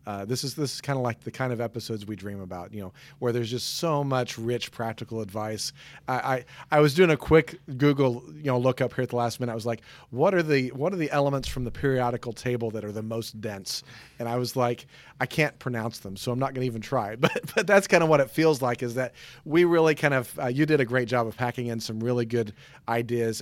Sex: male